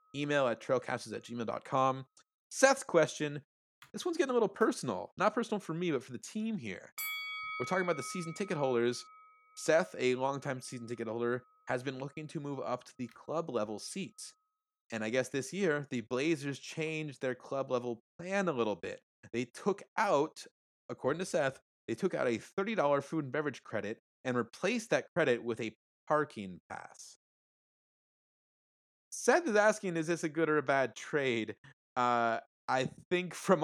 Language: English